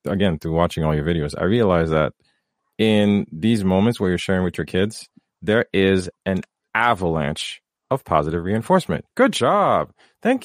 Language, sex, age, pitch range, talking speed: English, male, 40-59, 80-120 Hz, 160 wpm